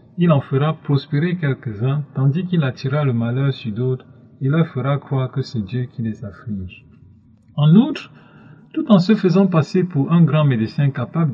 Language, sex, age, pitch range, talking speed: English, male, 40-59, 125-160 Hz, 180 wpm